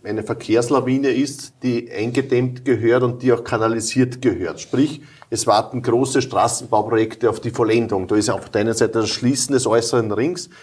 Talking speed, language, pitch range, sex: 170 wpm, German, 125-145 Hz, male